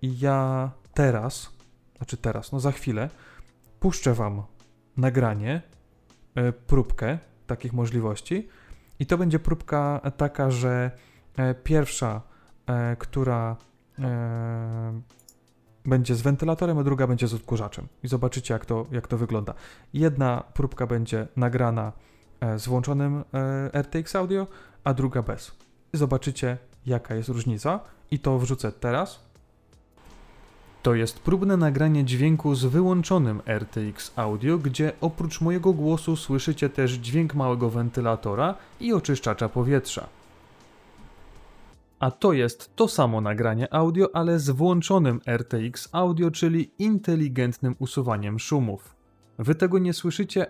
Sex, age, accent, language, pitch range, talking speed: male, 20-39, native, Polish, 115-155 Hz, 115 wpm